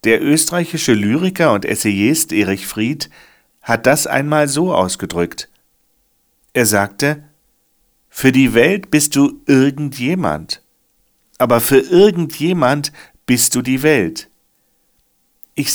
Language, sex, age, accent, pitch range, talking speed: German, male, 50-69, German, 115-155 Hz, 105 wpm